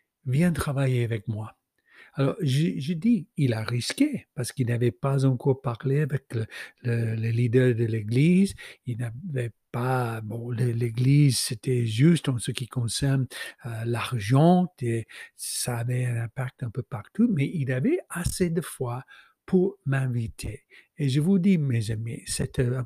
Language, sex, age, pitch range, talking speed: French, male, 60-79, 120-165 Hz, 170 wpm